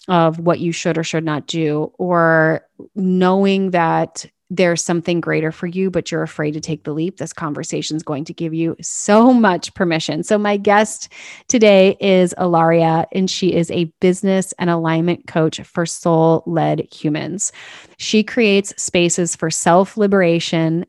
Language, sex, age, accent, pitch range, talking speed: English, female, 30-49, American, 160-185 Hz, 160 wpm